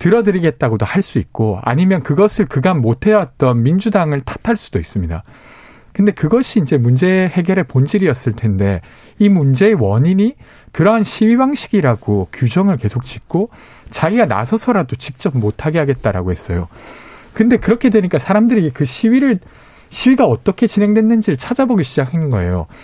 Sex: male